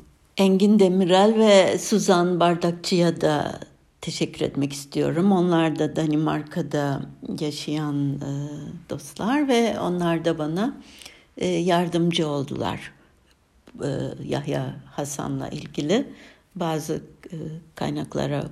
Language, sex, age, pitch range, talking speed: Turkish, female, 60-79, 160-225 Hz, 80 wpm